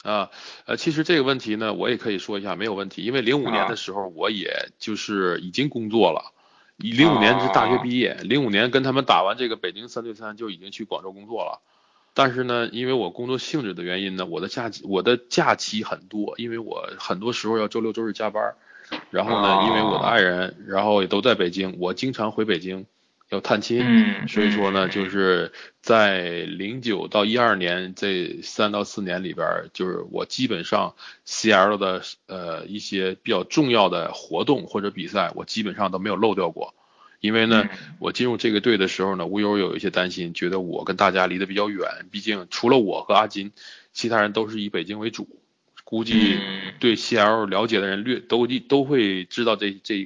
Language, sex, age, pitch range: Chinese, male, 20-39, 95-115 Hz